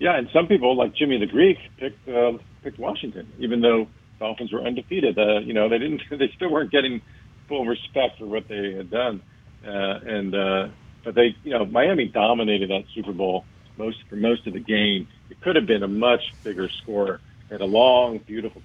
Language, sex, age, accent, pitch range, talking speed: English, male, 50-69, American, 100-120 Hz, 205 wpm